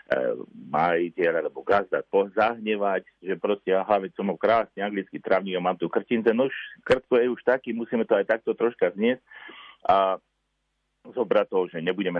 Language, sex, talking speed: Slovak, male, 150 wpm